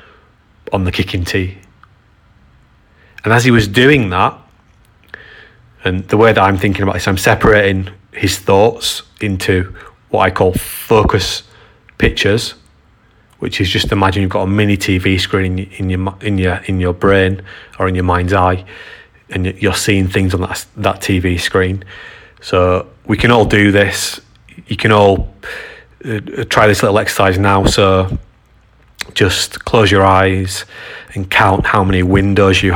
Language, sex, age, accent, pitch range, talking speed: English, male, 30-49, British, 90-100 Hz, 160 wpm